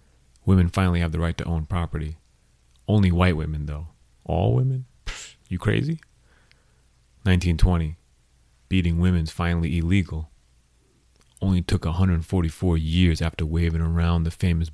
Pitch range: 75-90 Hz